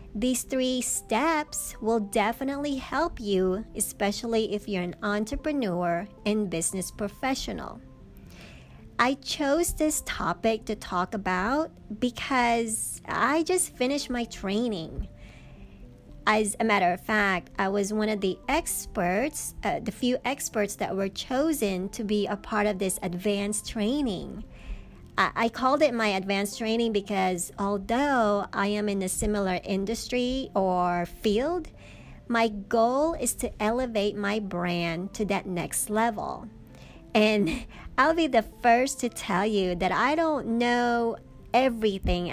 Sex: male